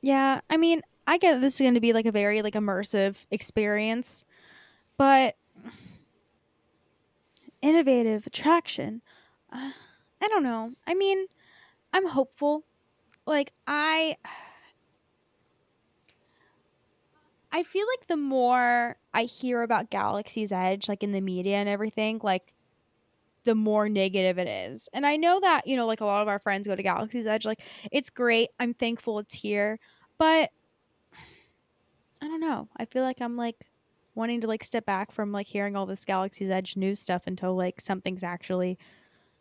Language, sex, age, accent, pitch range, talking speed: English, female, 10-29, American, 195-270 Hz, 155 wpm